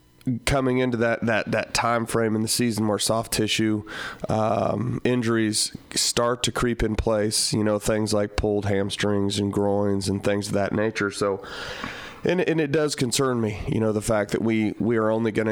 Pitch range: 110-125 Hz